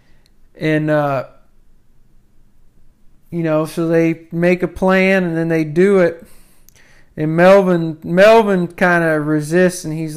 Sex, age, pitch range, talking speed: male, 40-59, 160-190 Hz, 130 wpm